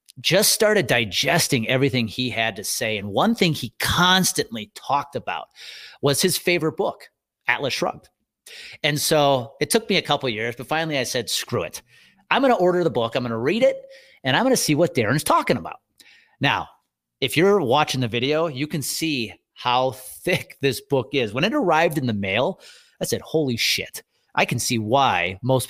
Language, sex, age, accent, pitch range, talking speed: English, male, 30-49, American, 115-160 Hz, 190 wpm